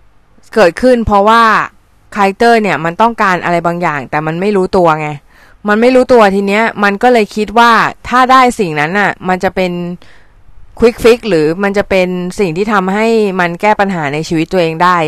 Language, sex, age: Thai, female, 20-39